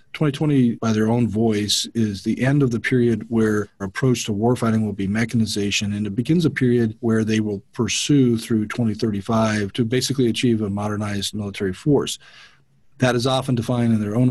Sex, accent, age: male, American, 40-59